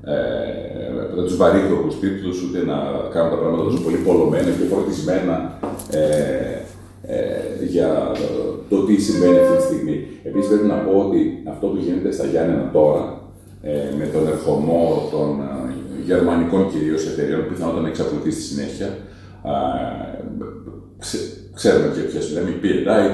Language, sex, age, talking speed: Greek, male, 40-59, 150 wpm